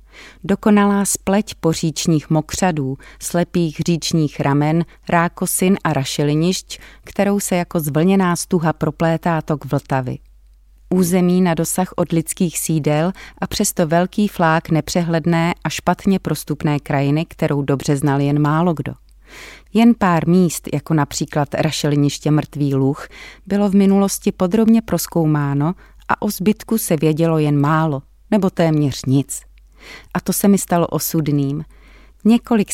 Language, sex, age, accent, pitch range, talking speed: Czech, female, 30-49, native, 150-180 Hz, 125 wpm